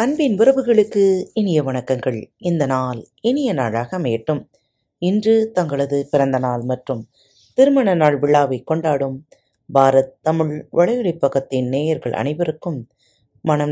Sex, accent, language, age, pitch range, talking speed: female, native, Tamil, 30-49, 125-190 Hz, 105 wpm